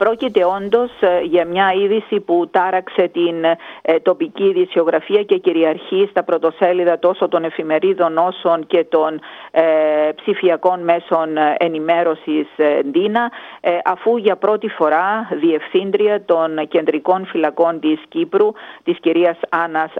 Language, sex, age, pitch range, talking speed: Greek, female, 50-69, 165-205 Hz, 110 wpm